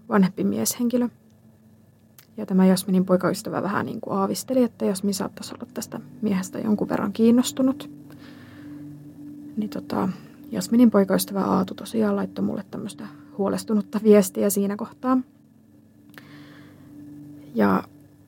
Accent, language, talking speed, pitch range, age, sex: native, Finnish, 110 wpm, 145-220 Hz, 20-39, female